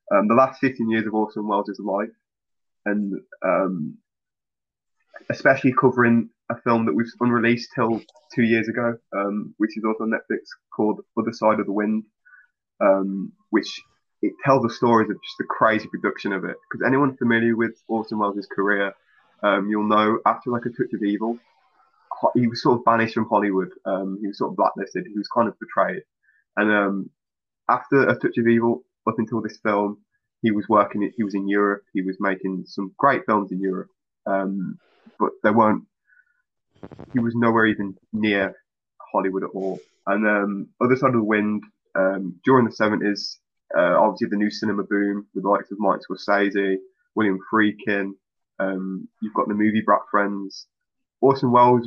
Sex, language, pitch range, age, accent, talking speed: male, English, 100-115 Hz, 20-39, British, 175 wpm